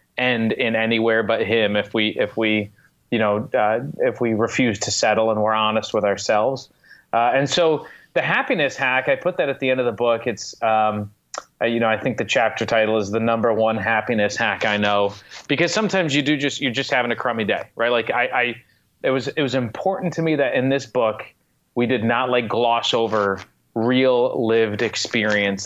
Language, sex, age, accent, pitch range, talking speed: English, male, 30-49, American, 110-130 Hz, 210 wpm